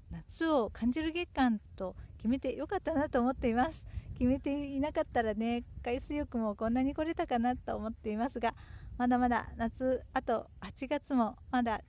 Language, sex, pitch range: Japanese, female, 225-295 Hz